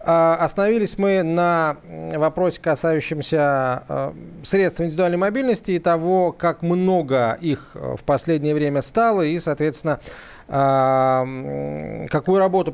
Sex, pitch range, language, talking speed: male, 150-190 Hz, Russian, 100 wpm